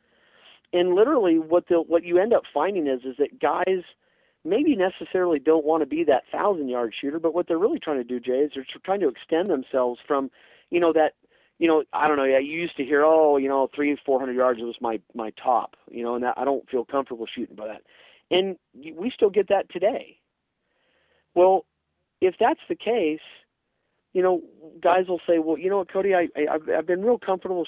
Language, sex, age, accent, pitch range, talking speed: English, male, 40-59, American, 130-180 Hz, 215 wpm